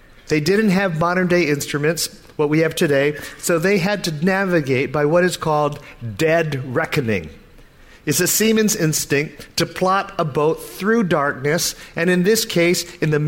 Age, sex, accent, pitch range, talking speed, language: 50-69, male, American, 155-195 Hz, 165 wpm, English